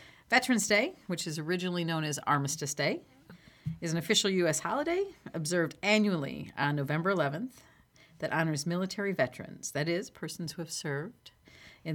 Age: 40-59